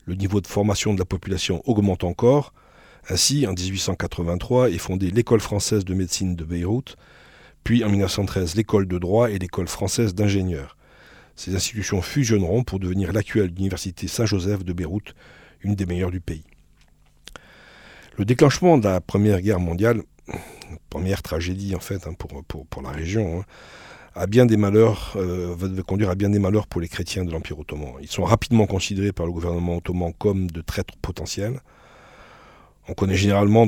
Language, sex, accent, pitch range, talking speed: French, male, French, 90-105 Hz, 165 wpm